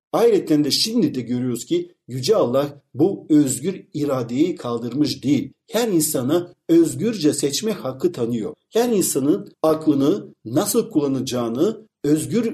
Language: Turkish